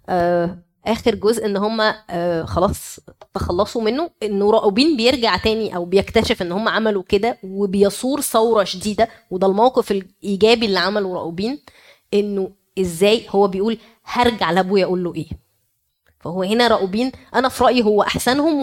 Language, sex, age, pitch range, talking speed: Arabic, female, 20-39, 195-240 Hz, 145 wpm